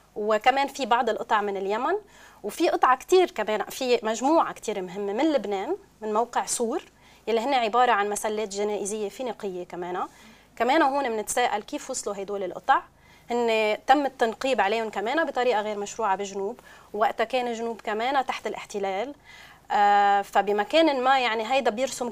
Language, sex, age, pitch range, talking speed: Arabic, female, 20-39, 195-245 Hz, 150 wpm